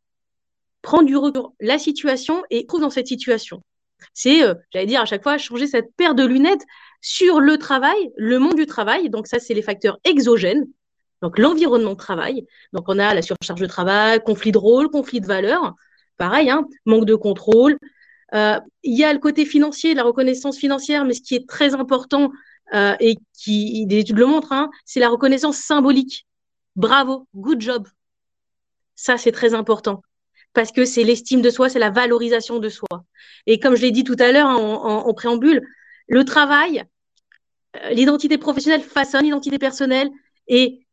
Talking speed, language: 175 wpm, French